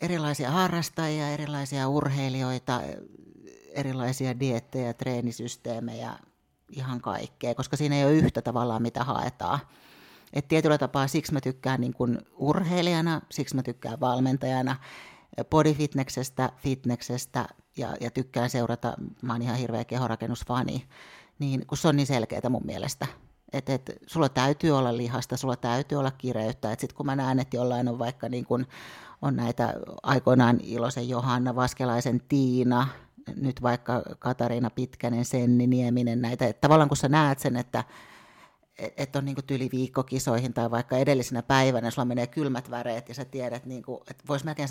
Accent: native